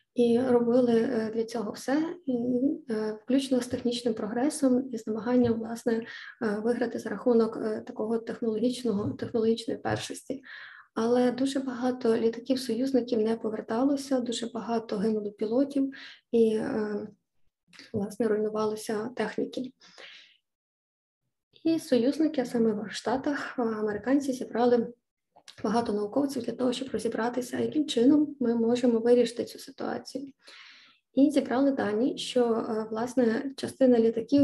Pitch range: 225-255 Hz